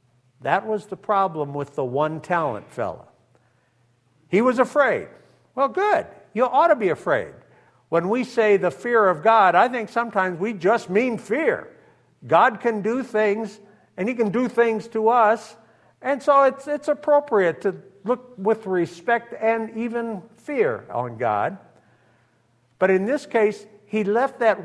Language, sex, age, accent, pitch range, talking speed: English, male, 60-79, American, 150-235 Hz, 155 wpm